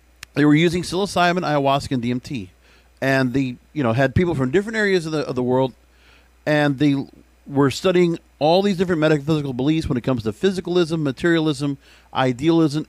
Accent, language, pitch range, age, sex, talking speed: American, English, 125-185 Hz, 50-69, male, 170 wpm